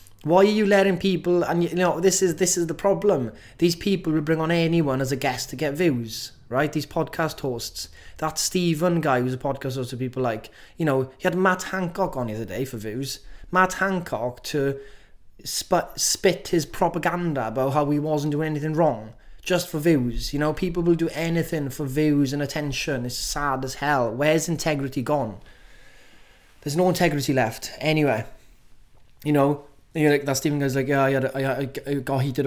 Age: 20-39